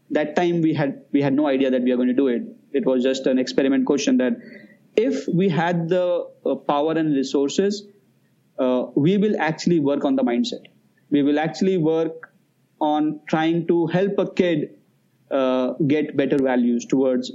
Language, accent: English, Indian